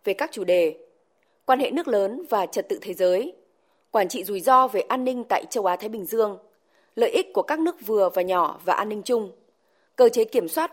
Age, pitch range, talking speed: 20-39, 195-315 Hz, 235 wpm